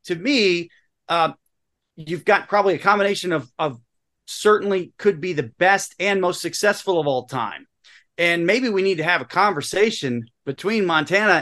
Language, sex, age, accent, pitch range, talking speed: English, male, 30-49, American, 155-205 Hz, 165 wpm